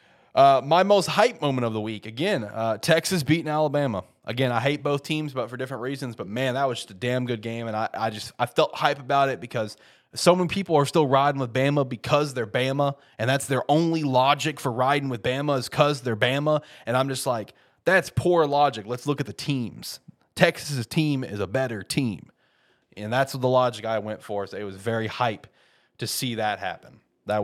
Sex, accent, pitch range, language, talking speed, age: male, American, 110-140 Hz, English, 220 wpm, 20-39